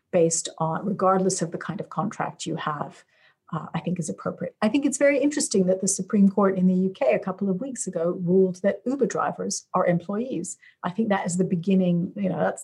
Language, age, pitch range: English, 50-69, 180-235 Hz